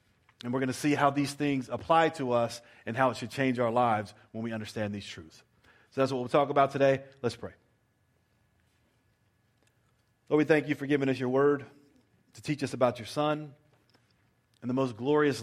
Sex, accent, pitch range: male, American, 120-155 Hz